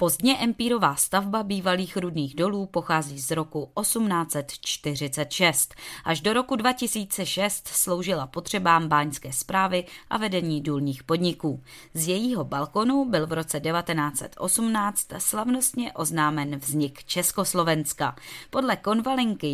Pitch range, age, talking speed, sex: 150-200 Hz, 20-39, 105 wpm, female